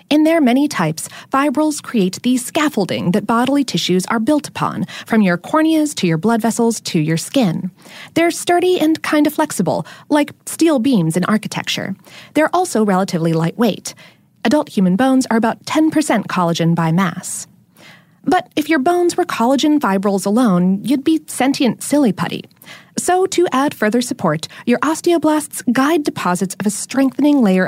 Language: English